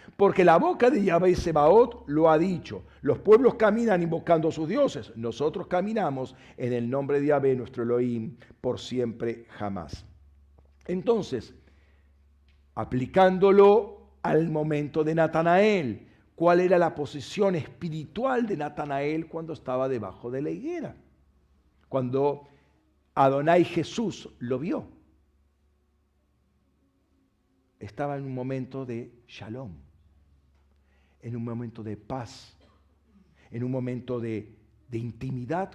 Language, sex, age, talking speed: Spanish, male, 50-69, 120 wpm